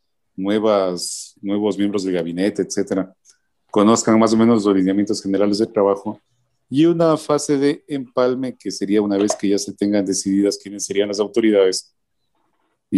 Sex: male